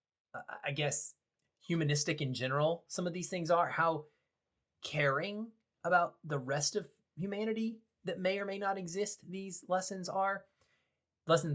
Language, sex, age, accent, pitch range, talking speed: English, male, 20-39, American, 125-165 Hz, 140 wpm